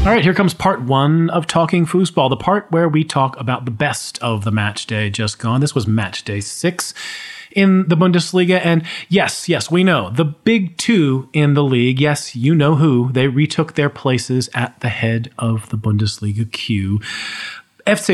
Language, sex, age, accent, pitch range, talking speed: English, male, 40-59, American, 120-170 Hz, 190 wpm